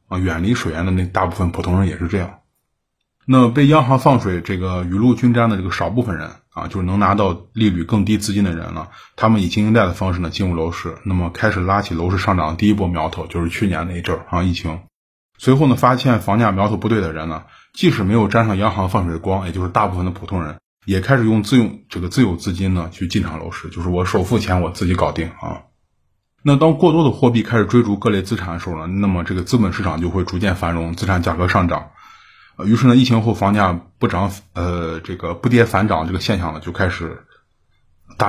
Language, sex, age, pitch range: Chinese, male, 20-39, 90-115 Hz